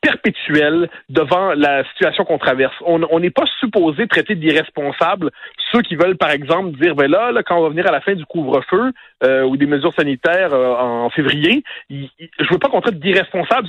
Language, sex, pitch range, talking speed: French, male, 155-230 Hz, 195 wpm